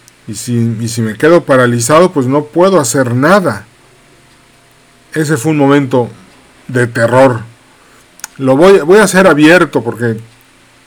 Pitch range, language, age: 120-145 Hz, Spanish, 40-59